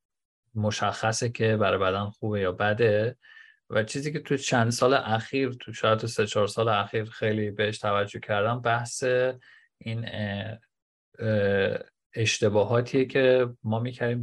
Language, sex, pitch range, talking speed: Persian, male, 105-120 Hz, 130 wpm